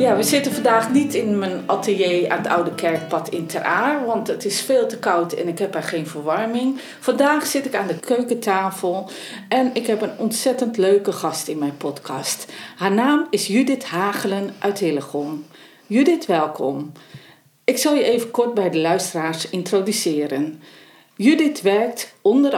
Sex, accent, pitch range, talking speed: female, Dutch, 165-245 Hz, 170 wpm